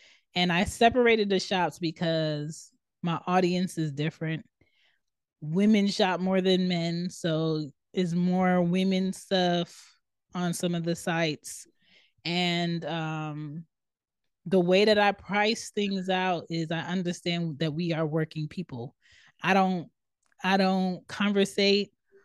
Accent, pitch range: American, 165-200 Hz